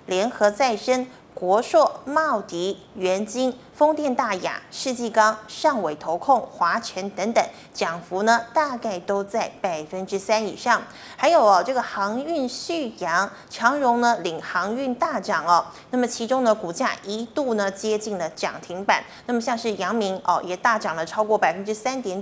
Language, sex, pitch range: Chinese, female, 195-255 Hz